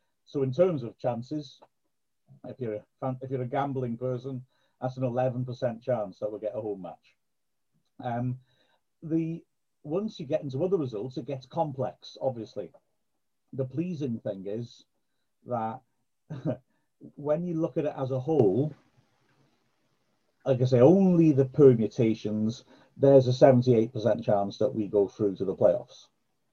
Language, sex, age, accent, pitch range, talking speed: English, male, 50-69, British, 110-145 Hz, 150 wpm